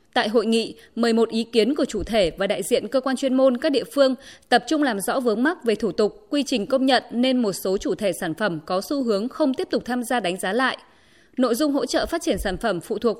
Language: Vietnamese